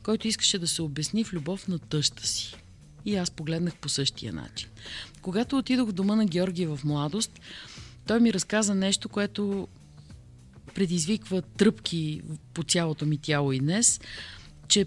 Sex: female